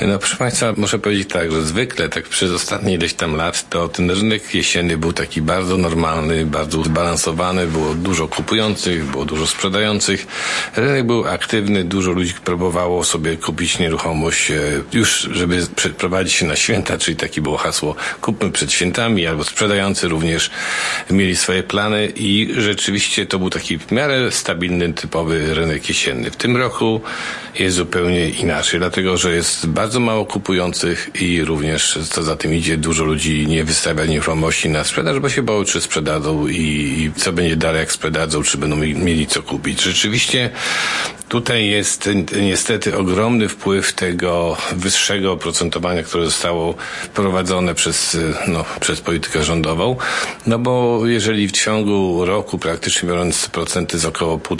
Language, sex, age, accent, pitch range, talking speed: Polish, male, 50-69, native, 80-100 Hz, 155 wpm